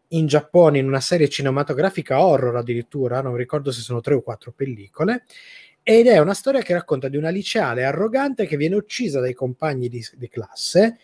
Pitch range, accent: 130-185 Hz, native